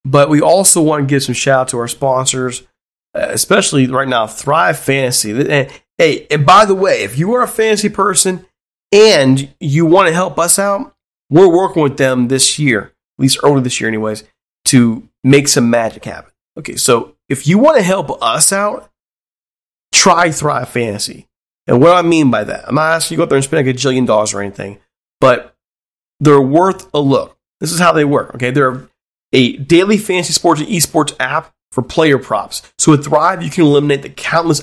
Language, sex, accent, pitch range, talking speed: English, male, American, 130-180 Hz, 205 wpm